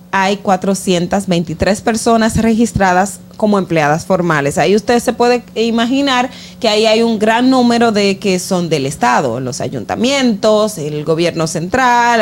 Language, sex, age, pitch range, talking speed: Spanish, female, 30-49, 180-245 Hz, 135 wpm